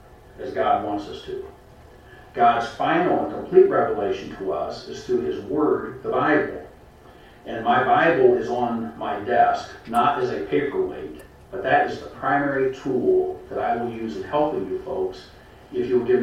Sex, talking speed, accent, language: male, 175 wpm, American, English